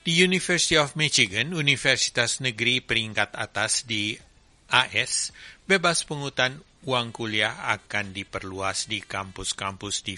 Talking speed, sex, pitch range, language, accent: 110 wpm, male, 100-120 Hz, English, Indonesian